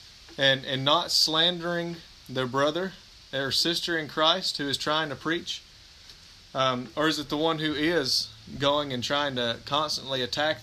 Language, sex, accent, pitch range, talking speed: English, male, American, 115-150 Hz, 165 wpm